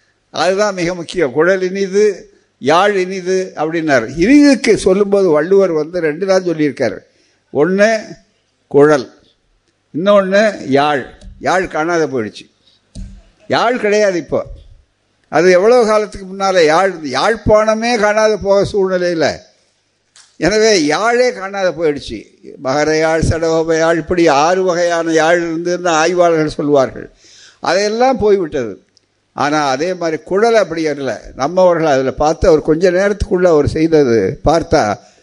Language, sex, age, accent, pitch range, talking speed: Tamil, male, 60-79, native, 155-195 Hz, 110 wpm